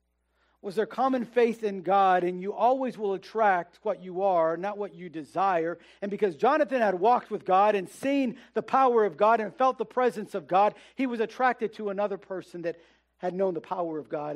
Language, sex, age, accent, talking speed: English, male, 50-69, American, 210 wpm